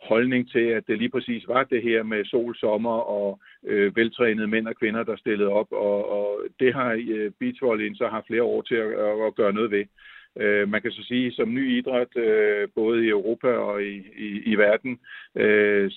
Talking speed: 205 wpm